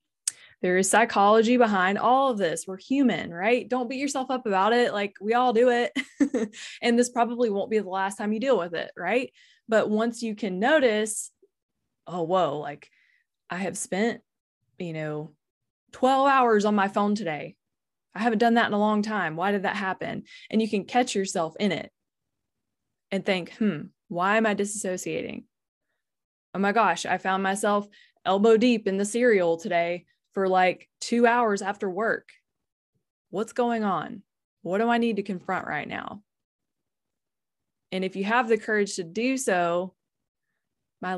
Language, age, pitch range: English, 20-39, 185-235 Hz